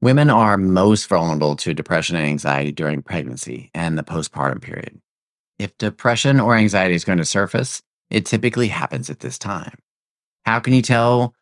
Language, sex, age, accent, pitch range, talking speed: English, male, 30-49, American, 80-115 Hz, 170 wpm